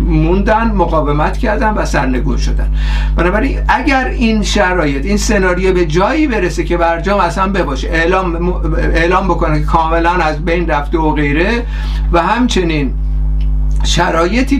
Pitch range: 150-190 Hz